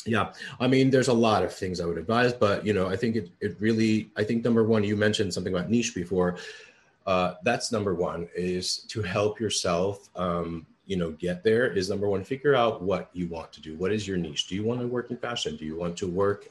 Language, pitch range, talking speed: English, 85-105 Hz, 245 wpm